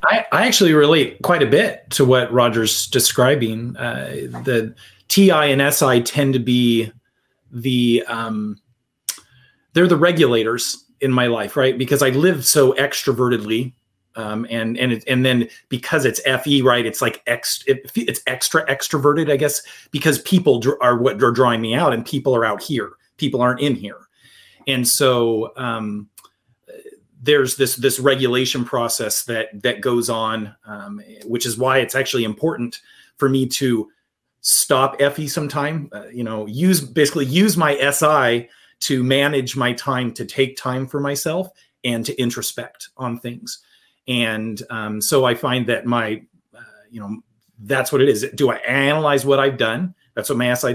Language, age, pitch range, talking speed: English, 30-49, 120-140 Hz, 170 wpm